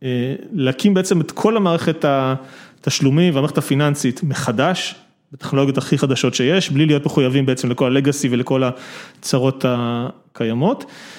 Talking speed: 120 wpm